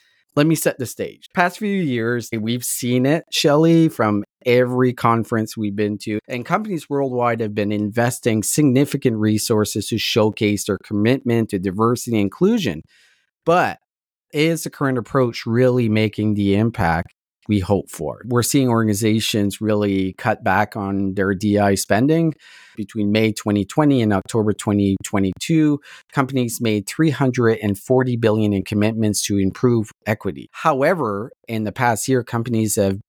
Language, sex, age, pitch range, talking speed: English, male, 30-49, 105-130 Hz, 140 wpm